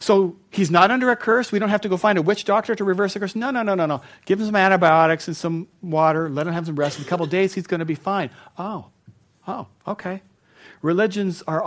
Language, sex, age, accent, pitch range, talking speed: English, male, 50-69, American, 140-190 Hz, 260 wpm